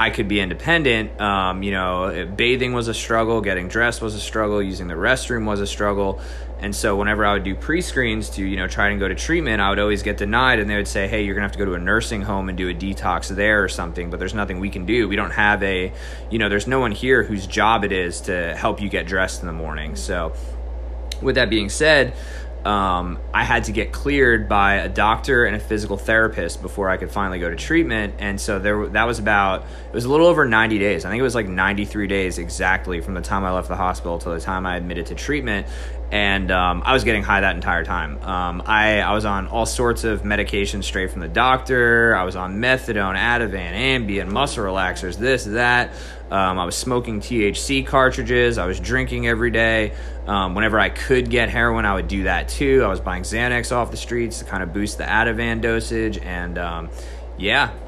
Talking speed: 230 wpm